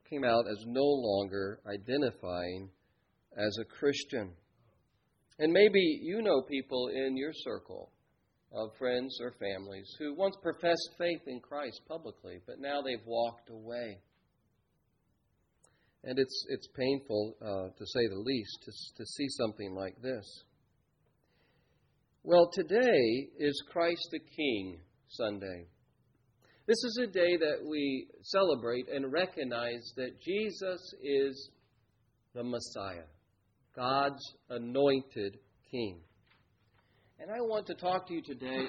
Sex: male